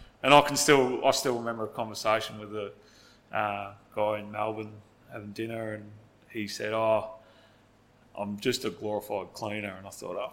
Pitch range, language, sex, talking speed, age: 105-120 Hz, English, male, 175 wpm, 20-39